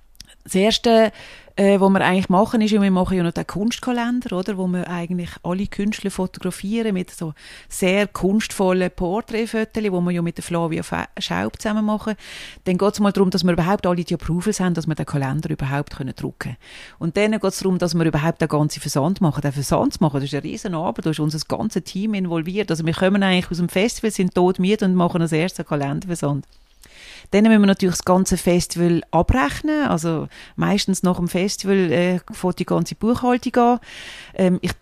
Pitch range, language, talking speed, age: 170-200 Hz, German, 195 wpm, 30-49